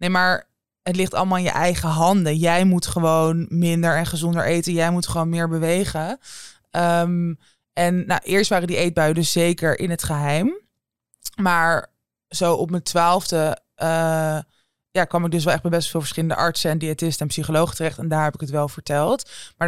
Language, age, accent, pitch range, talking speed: Dutch, 20-39, Dutch, 160-180 Hz, 190 wpm